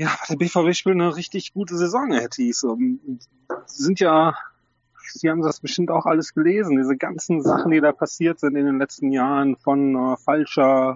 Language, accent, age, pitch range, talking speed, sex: German, German, 30-49, 130-175 Hz, 185 wpm, male